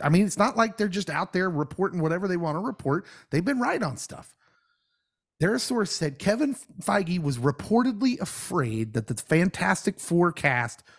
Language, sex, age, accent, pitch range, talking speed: English, male, 30-49, American, 155-220 Hz, 180 wpm